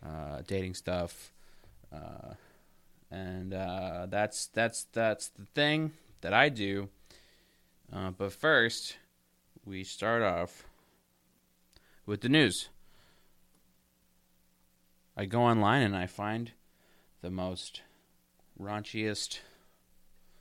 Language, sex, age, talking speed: English, male, 30-49, 95 wpm